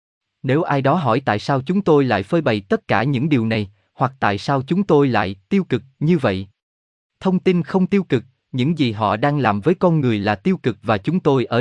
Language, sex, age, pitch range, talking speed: Vietnamese, male, 20-39, 110-155 Hz, 240 wpm